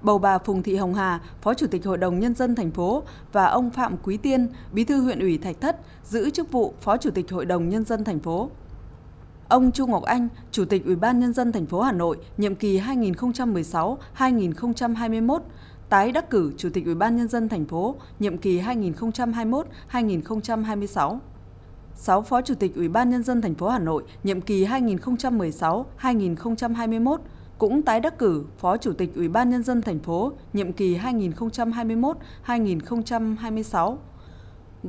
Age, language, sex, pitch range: 20-39, Vietnamese, female, 185-245 Hz